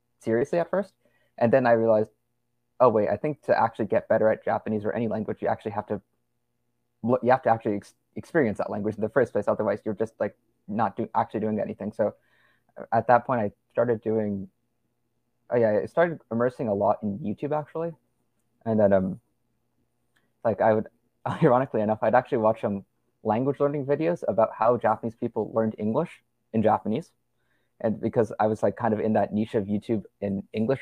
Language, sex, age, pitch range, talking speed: English, male, 20-39, 105-125 Hz, 195 wpm